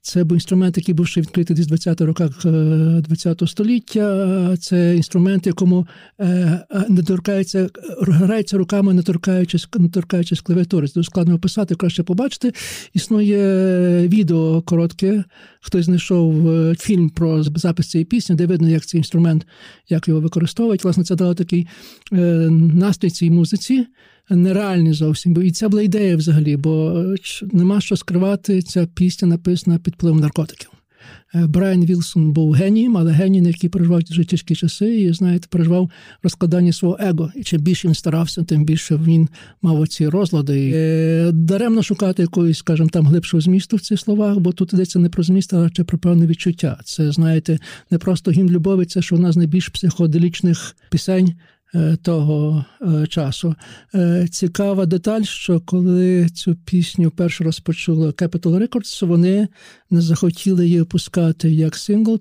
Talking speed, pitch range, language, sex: 145 wpm, 165-185 Hz, Ukrainian, male